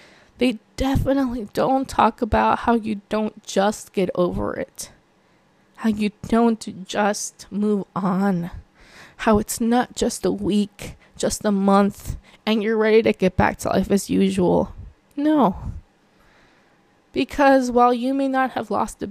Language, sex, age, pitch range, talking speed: English, female, 20-39, 215-265 Hz, 145 wpm